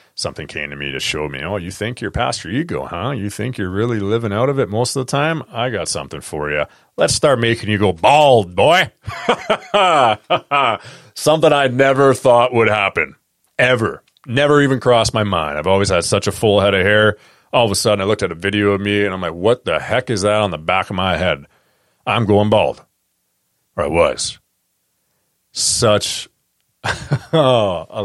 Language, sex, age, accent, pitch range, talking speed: English, male, 30-49, American, 90-120 Hz, 200 wpm